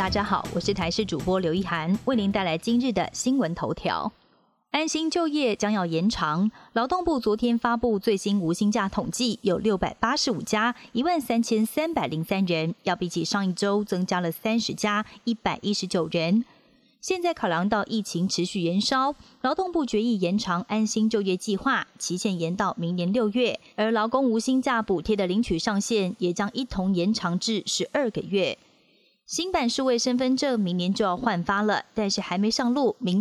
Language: Chinese